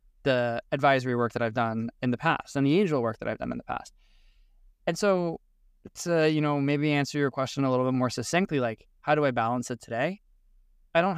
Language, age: English, 20-39